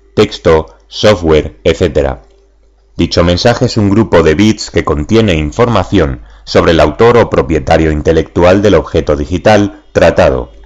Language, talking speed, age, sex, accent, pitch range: Spanish, 130 wpm, 30-49, male, Spanish, 70-105 Hz